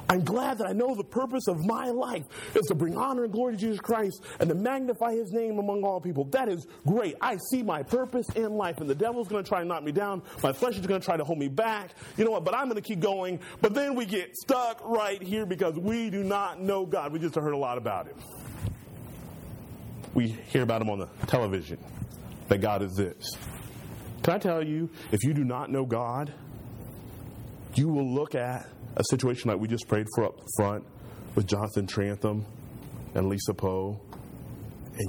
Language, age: English, 30-49